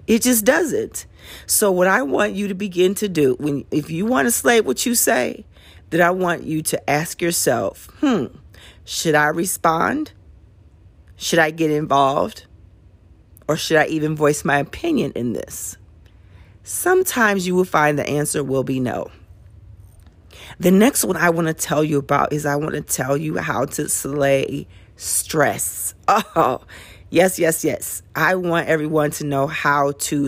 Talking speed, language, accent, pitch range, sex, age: 165 wpm, English, American, 130-175 Hz, female, 40-59